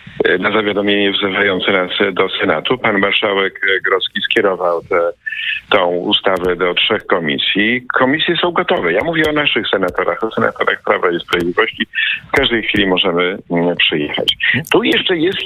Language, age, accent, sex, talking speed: Polish, 50-69, native, male, 140 wpm